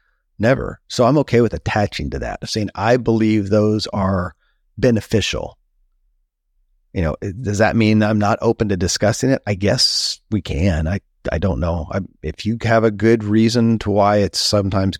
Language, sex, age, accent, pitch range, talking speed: English, male, 30-49, American, 90-110 Hz, 175 wpm